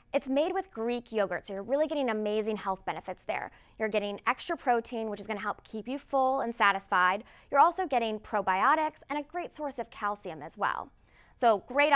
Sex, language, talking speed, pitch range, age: female, English, 200 wpm, 210-295 Hz, 20-39